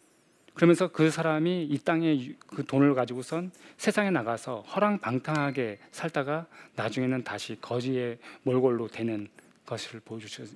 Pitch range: 125-175 Hz